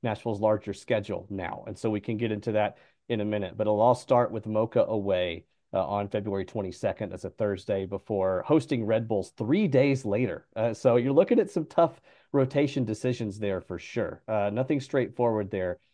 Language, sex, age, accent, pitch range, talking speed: English, male, 40-59, American, 110-135 Hz, 190 wpm